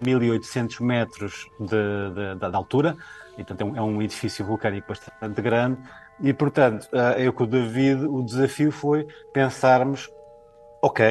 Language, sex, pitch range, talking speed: Portuguese, male, 110-125 Hz, 130 wpm